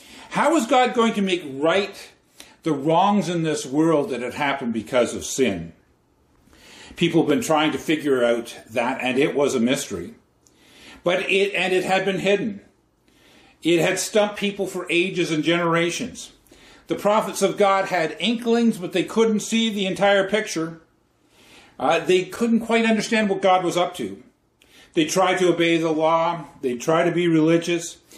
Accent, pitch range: American, 155-200 Hz